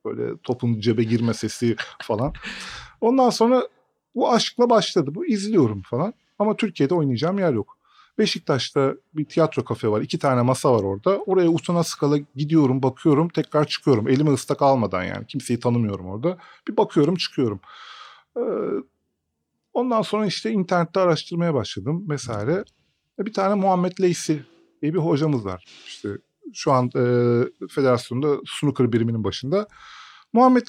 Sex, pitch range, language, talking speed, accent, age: male, 130-200 Hz, Turkish, 135 wpm, native, 40-59